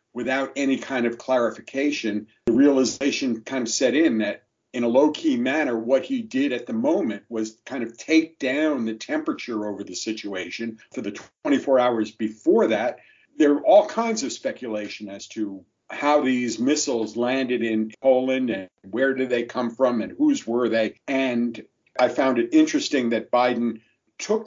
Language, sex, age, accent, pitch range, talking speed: English, male, 50-69, American, 115-145 Hz, 175 wpm